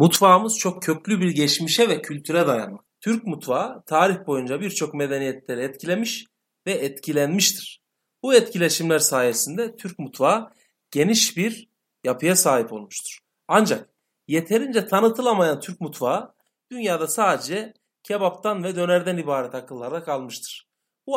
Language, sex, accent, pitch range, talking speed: Turkish, male, native, 155-220 Hz, 115 wpm